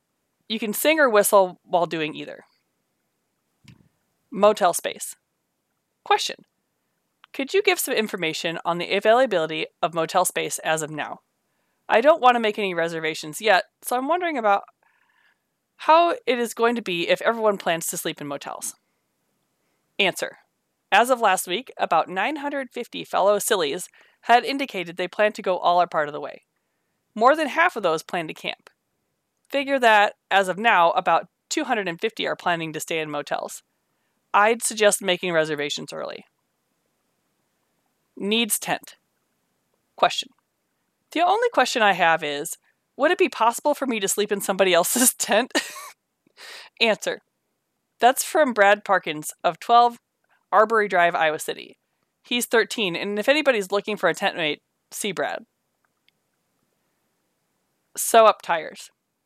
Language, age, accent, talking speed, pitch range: English, 20-39, American, 145 wpm, 175-250 Hz